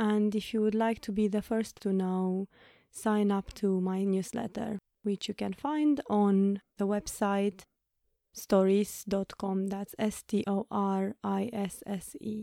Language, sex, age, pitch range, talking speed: English, female, 20-39, 195-220 Hz, 125 wpm